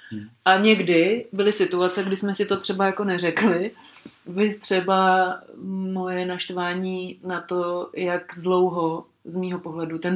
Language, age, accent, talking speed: Czech, 30-49, native, 135 wpm